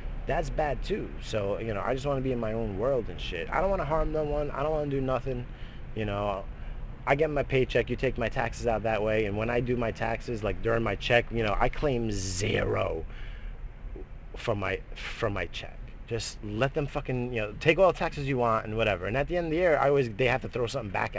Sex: male